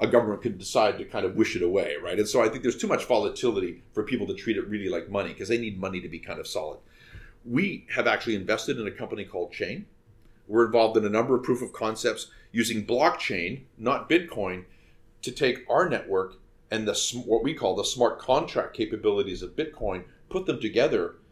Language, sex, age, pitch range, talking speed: English, male, 40-59, 110-145 Hz, 215 wpm